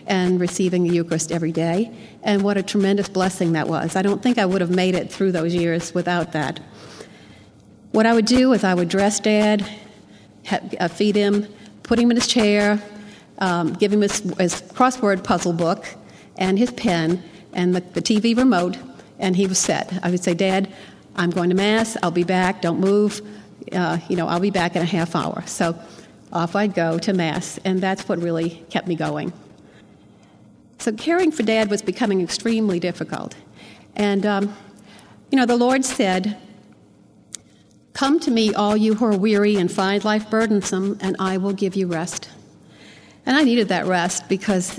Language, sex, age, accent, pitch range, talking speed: English, female, 50-69, American, 180-215 Hz, 185 wpm